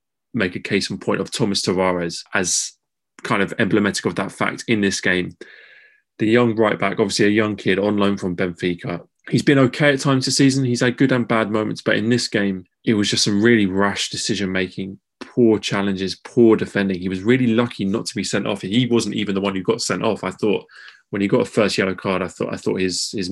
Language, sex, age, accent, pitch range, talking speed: English, male, 20-39, British, 95-115 Hz, 235 wpm